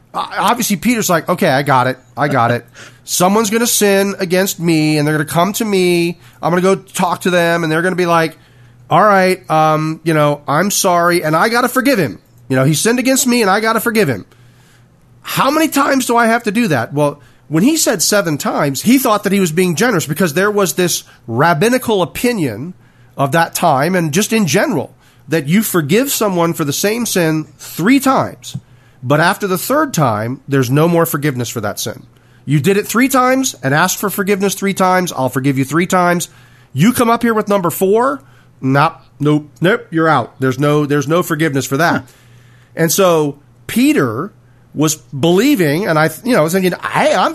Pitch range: 135-205 Hz